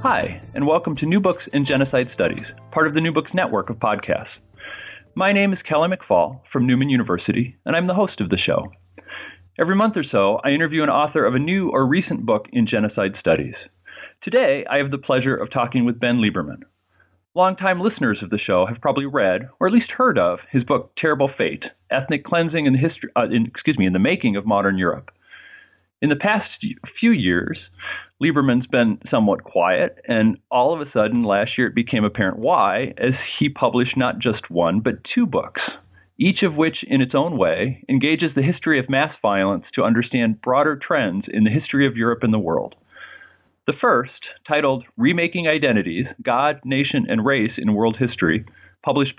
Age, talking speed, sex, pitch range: 40-59, 195 wpm, male, 115-165 Hz